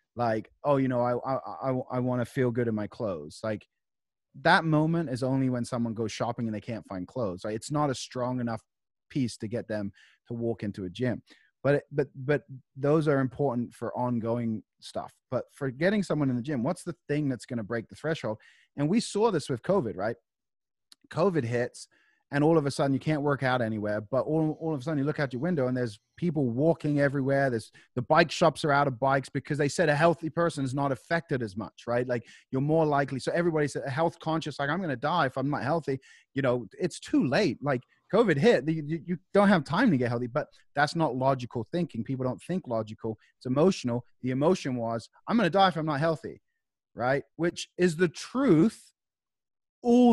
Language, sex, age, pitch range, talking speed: English, male, 30-49, 120-160 Hz, 225 wpm